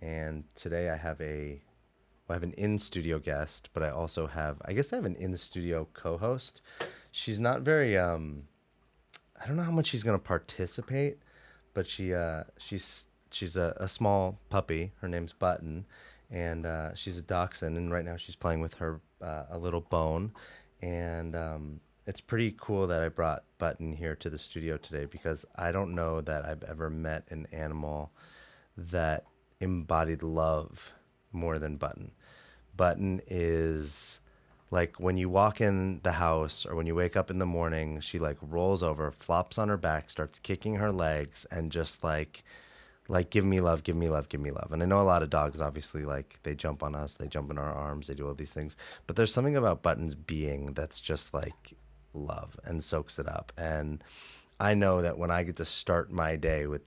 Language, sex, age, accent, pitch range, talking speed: English, male, 30-49, American, 75-95 Hz, 195 wpm